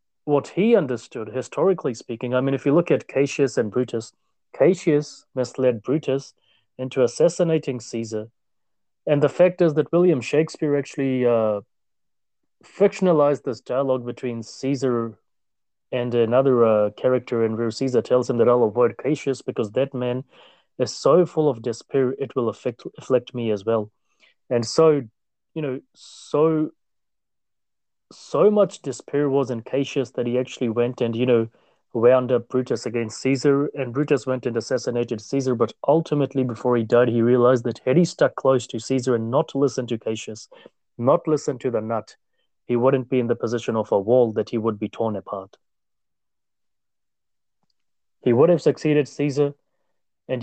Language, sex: English, male